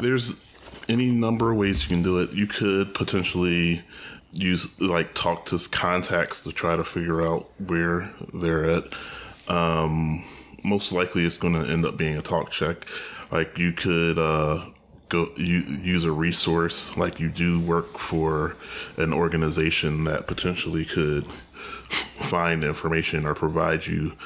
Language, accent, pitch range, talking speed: English, American, 80-90 Hz, 150 wpm